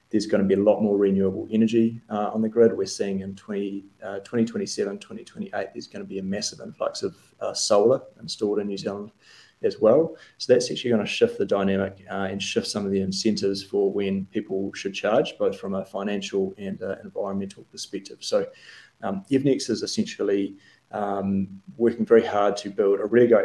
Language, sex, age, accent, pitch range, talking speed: English, male, 30-49, Australian, 100-120 Hz, 195 wpm